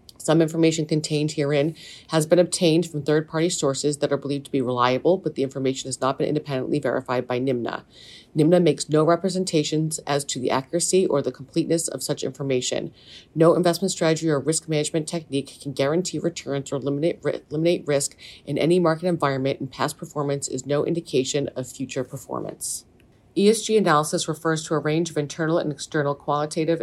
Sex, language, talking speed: female, English, 175 wpm